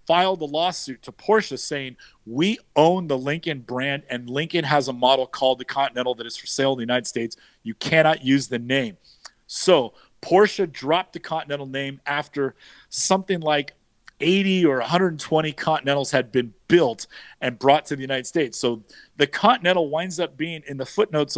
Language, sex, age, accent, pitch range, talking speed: English, male, 40-59, American, 135-170 Hz, 175 wpm